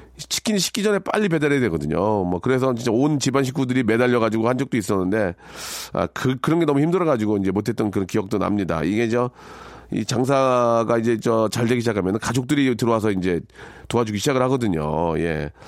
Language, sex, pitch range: Korean, male, 110-150 Hz